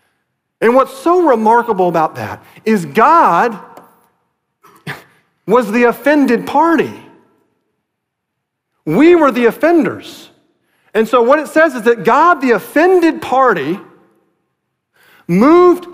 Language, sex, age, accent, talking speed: English, male, 40-59, American, 105 wpm